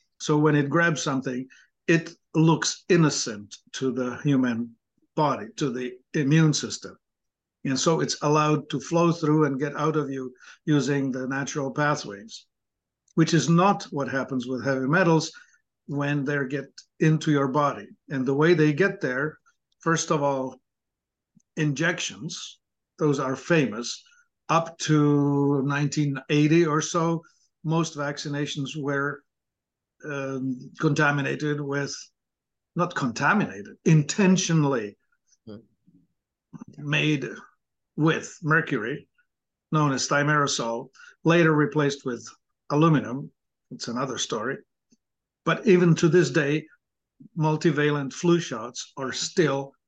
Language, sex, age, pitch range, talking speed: English, male, 50-69, 135-165 Hz, 115 wpm